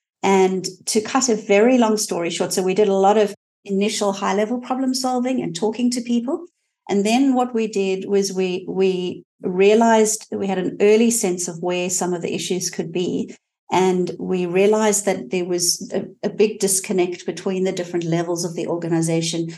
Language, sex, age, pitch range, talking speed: English, female, 50-69, 180-215 Hz, 190 wpm